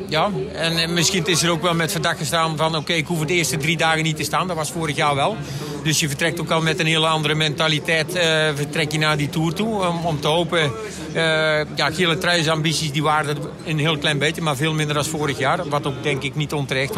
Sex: male